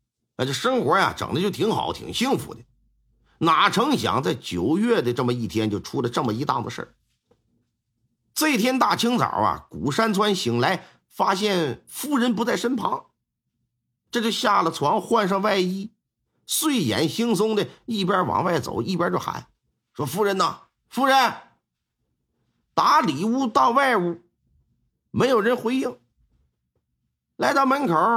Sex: male